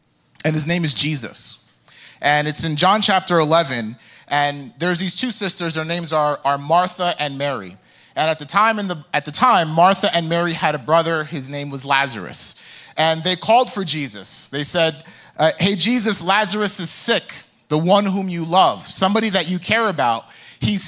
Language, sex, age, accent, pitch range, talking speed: English, male, 30-49, American, 155-205 Hz, 180 wpm